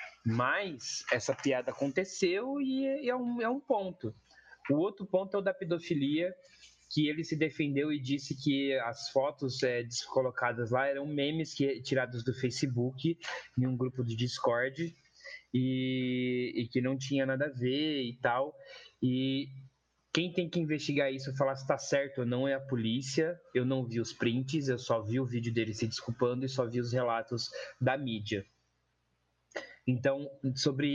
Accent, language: Brazilian, Portuguese